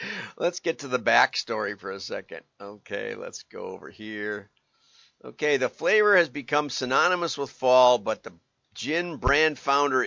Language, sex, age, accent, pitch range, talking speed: English, male, 50-69, American, 110-140 Hz, 160 wpm